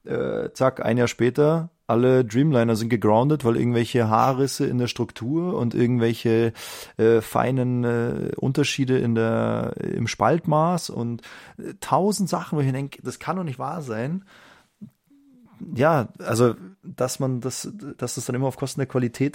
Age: 30-49